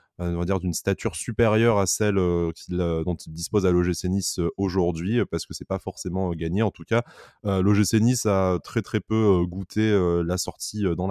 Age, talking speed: 20-39, 185 wpm